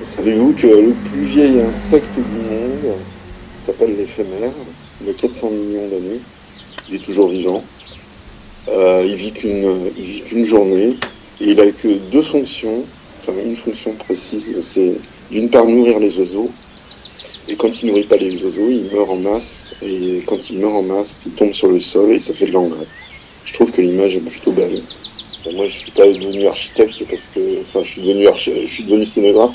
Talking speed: 185 wpm